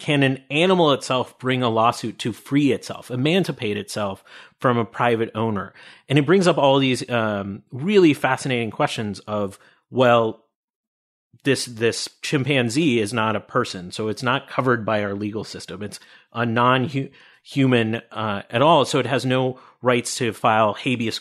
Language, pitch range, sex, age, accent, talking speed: English, 110-135 Hz, male, 30-49, American, 160 wpm